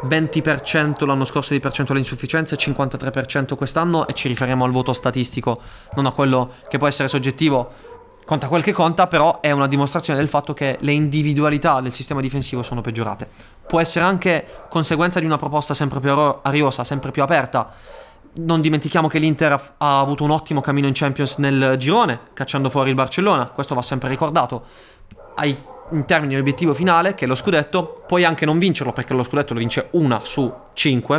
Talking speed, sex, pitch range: 185 wpm, male, 130-155 Hz